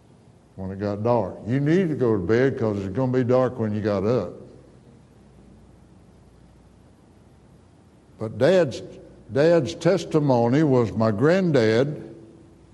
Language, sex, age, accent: English, male, 60-79, American